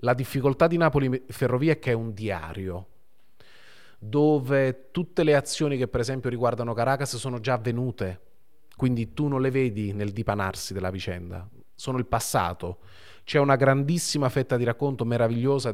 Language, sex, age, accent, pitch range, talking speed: Italian, male, 30-49, native, 100-125 Hz, 155 wpm